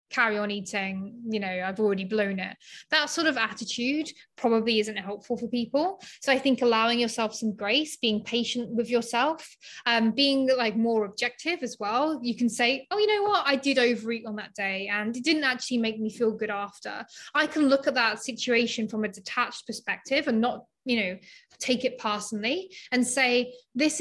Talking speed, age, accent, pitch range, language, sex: 195 wpm, 20-39, British, 215-260 Hz, English, female